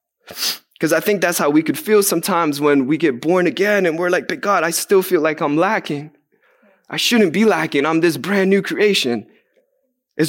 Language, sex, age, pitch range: English, male, 20-39, 145-195 Hz